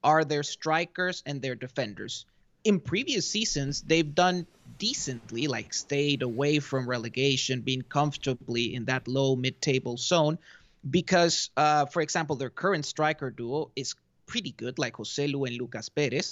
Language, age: English, 30-49